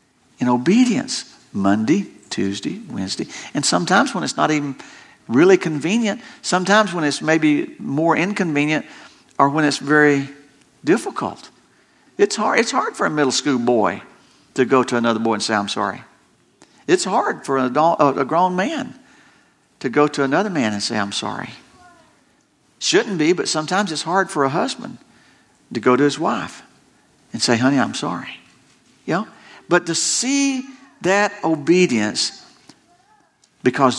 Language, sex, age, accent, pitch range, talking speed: English, male, 50-69, American, 125-175 Hz, 150 wpm